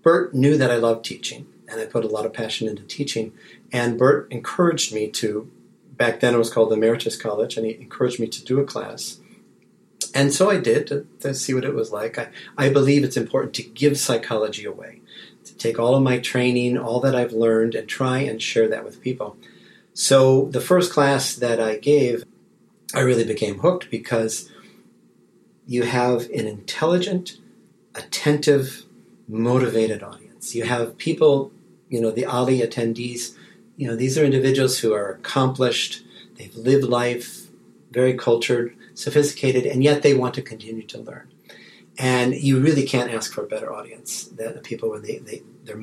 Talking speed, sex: 180 wpm, male